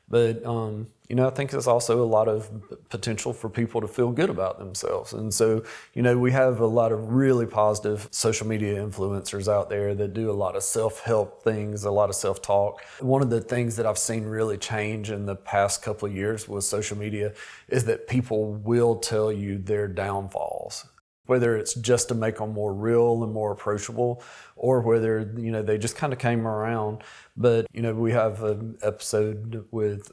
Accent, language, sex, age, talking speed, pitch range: American, English, male, 30-49, 200 wpm, 105-115 Hz